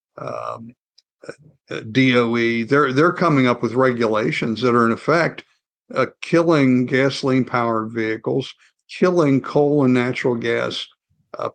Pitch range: 115-130 Hz